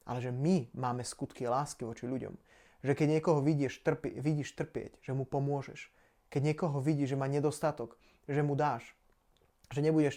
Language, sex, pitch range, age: Slovak, male, 130-150 Hz, 20-39